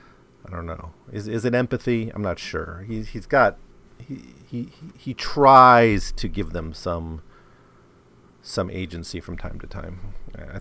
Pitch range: 85-115 Hz